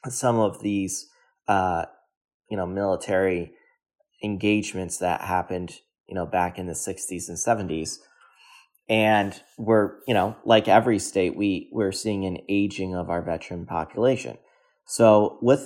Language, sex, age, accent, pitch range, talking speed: English, male, 30-49, American, 90-110 Hz, 140 wpm